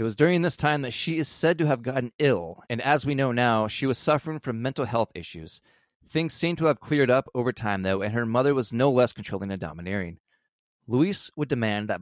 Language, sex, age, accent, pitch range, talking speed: English, male, 20-39, American, 100-135 Hz, 235 wpm